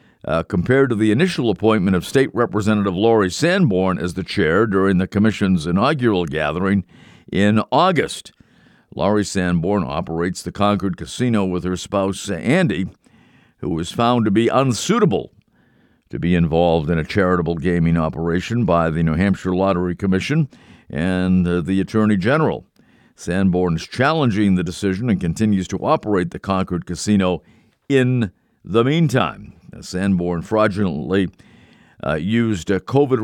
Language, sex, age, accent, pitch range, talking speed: English, male, 50-69, American, 90-115 Hz, 140 wpm